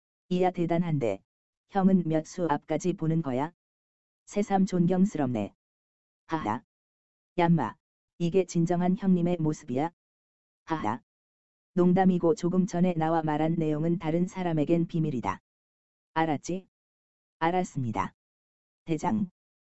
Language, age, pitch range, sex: Korean, 20-39, 135-180 Hz, female